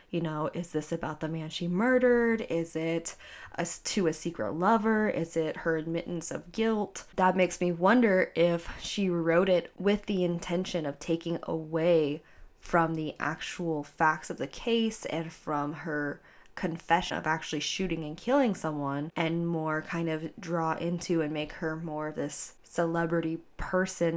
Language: English